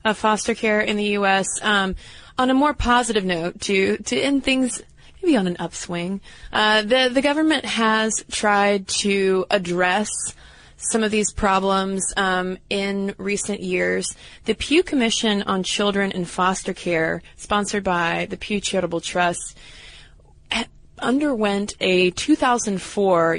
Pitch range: 175-210 Hz